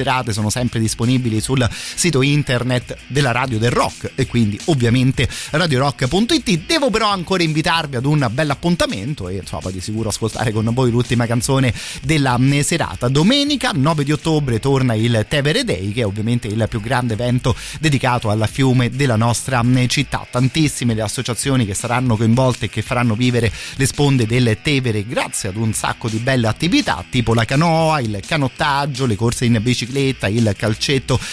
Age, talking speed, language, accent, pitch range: 30-49, 165 wpm, Italian, native, 115-140 Hz